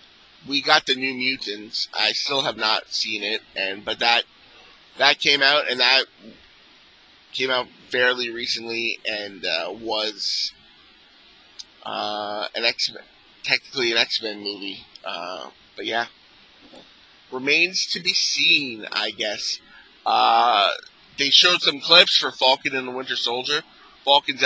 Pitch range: 115-135 Hz